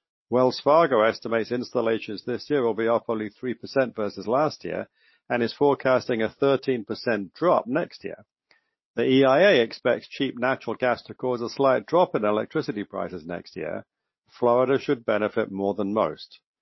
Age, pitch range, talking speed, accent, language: 50-69, 105-130 Hz, 160 wpm, British, English